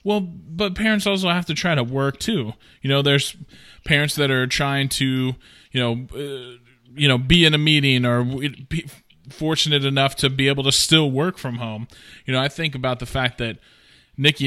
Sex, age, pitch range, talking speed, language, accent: male, 20-39, 130-165 Hz, 200 wpm, English, American